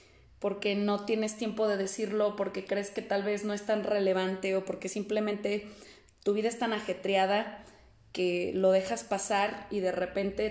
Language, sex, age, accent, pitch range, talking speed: Spanish, female, 20-39, Mexican, 195-225 Hz, 170 wpm